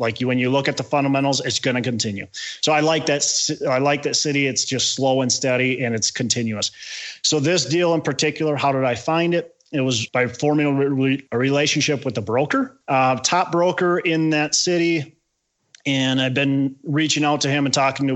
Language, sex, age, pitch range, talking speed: English, male, 30-49, 125-155 Hz, 210 wpm